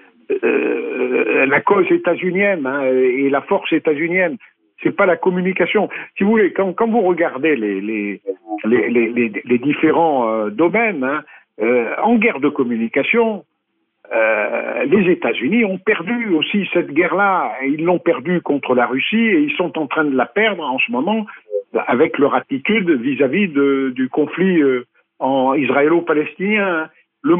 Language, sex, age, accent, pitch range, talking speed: French, male, 60-79, French, 145-220 Hz, 155 wpm